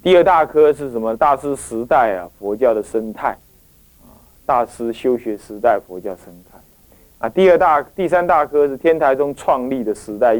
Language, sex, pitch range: Chinese, male, 105-135 Hz